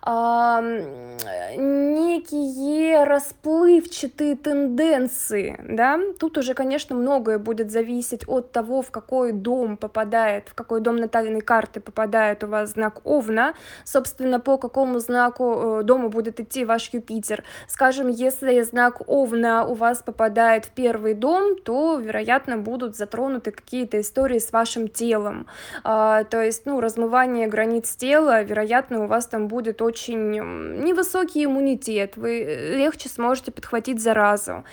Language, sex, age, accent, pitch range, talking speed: Russian, female, 20-39, native, 225-265 Hz, 130 wpm